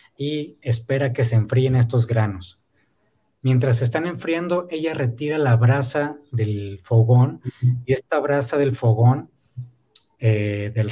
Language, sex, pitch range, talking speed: Spanish, male, 115-140 Hz, 130 wpm